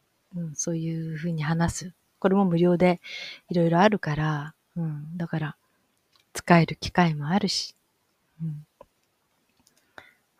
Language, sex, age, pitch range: Japanese, female, 30-49, 160-200 Hz